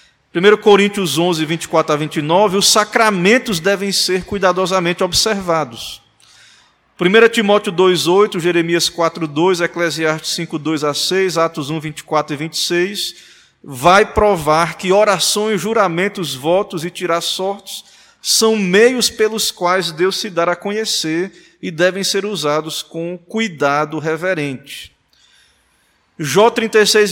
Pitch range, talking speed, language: 160-210 Hz, 120 wpm, Portuguese